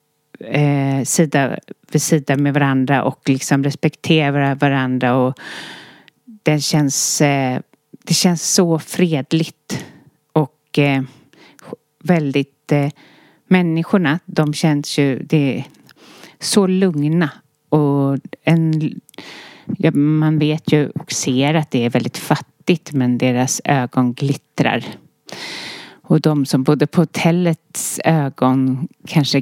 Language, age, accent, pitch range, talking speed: Swedish, 30-49, native, 135-160 Hz, 110 wpm